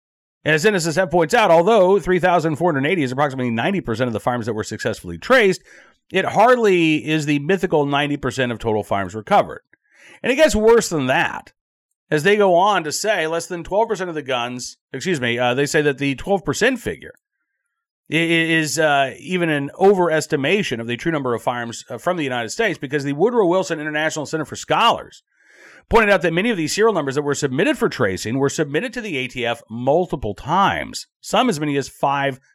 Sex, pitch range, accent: male, 130-185 Hz, American